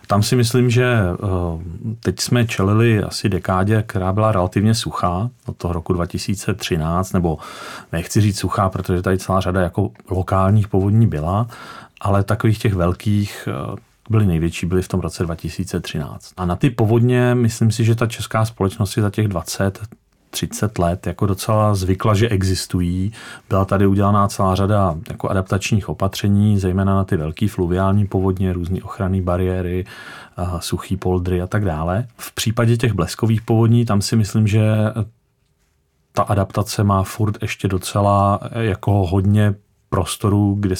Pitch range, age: 90-110 Hz, 40-59